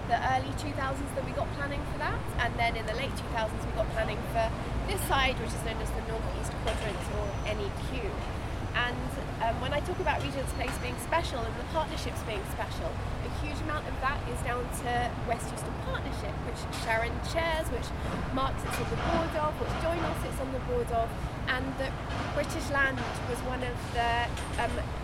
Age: 20-39